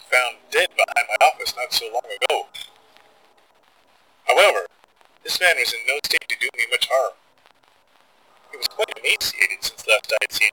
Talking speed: 170 wpm